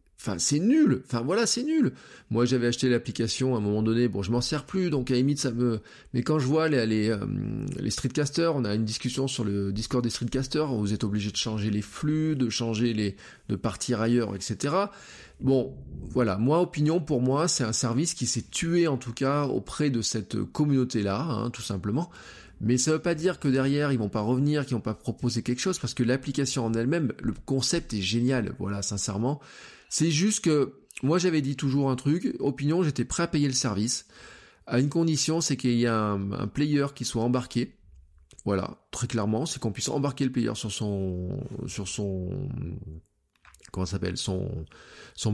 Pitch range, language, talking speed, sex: 110-140 Hz, French, 205 wpm, male